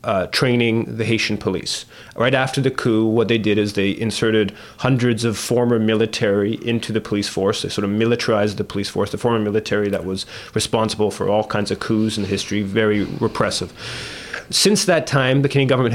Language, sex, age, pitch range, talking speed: English, male, 30-49, 115-140 Hz, 195 wpm